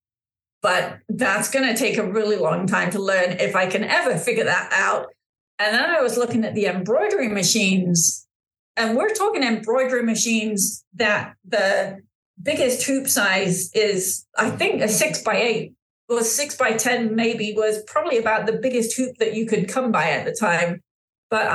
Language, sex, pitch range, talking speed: English, female, 195-240 Hz, 180 wpm